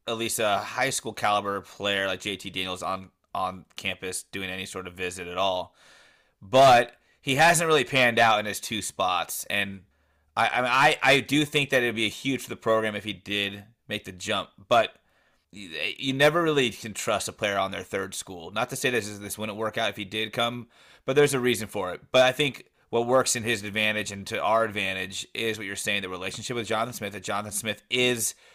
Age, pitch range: 30-49, 105-130 Hz